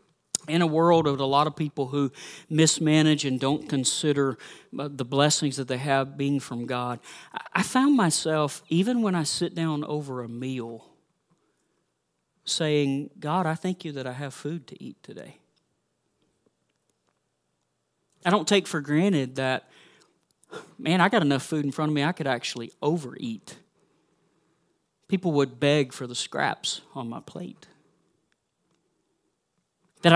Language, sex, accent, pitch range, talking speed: English, male, American, 135-170 Hz, 145 wpm